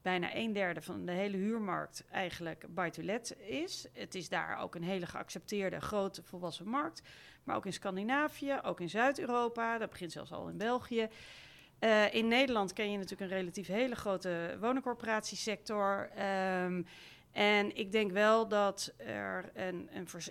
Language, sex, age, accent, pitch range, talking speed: Dutch, female, 40-59, Dutch, 180-220 Hz, 165 wpm